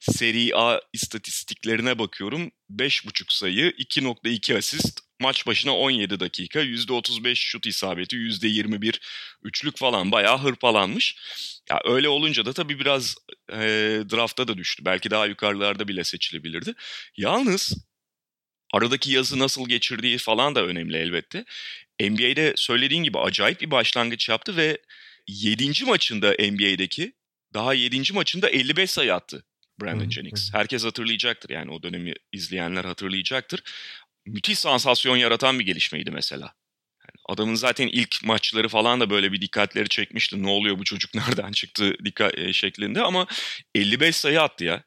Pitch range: 100-130 Hz